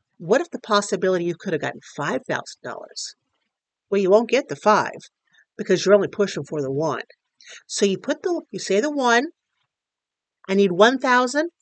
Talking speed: 170 wpm